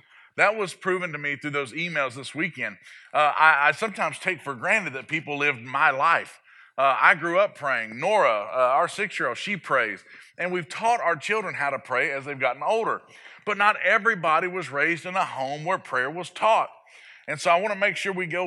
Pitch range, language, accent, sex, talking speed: 150-195 Hz, English, American, male, 210 wpm